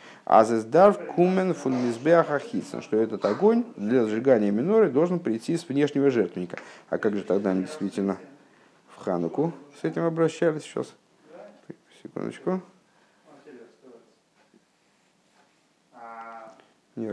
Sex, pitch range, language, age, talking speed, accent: male, 110-155 Hz, Russian, 50-69, 100 wpm, native